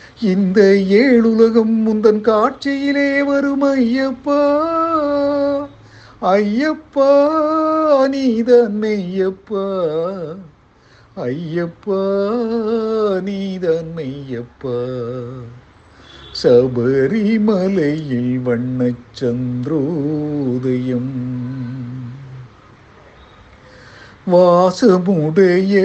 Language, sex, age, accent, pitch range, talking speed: Tamil, male, 50-69, native, 165-255 Hz, 35 wpm